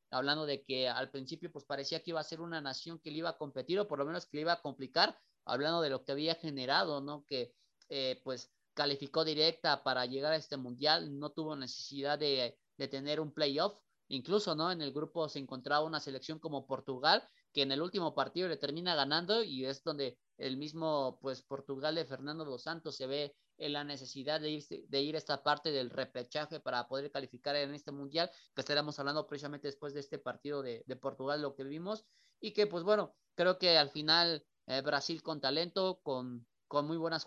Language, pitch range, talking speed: Spanish, 140-160 Hz, 215 wpm